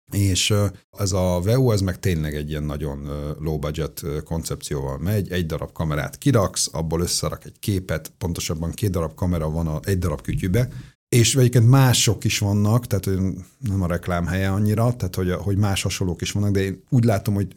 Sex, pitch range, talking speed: male, 80-110 Hz, 180 wpm